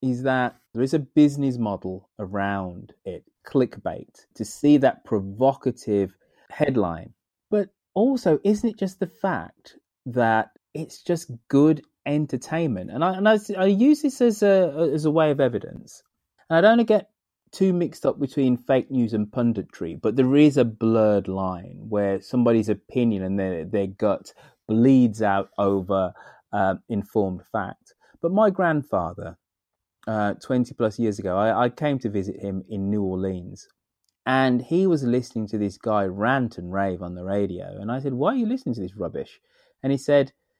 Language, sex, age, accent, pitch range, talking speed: English, male, 30-49, British, 100-165 Hz, 175 wpm